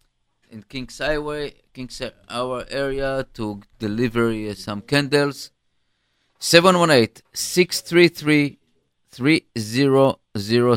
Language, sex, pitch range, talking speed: English, male, 110-135 Hz, 65 wpm